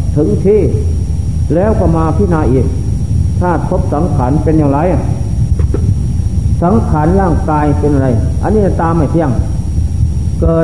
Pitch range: 85-110 Hz